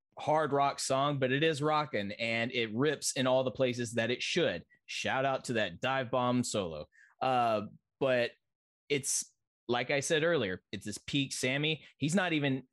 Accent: American